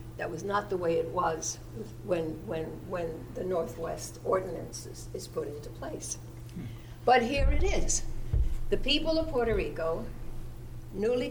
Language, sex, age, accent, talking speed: English, female, 60-79, American, 150 wpm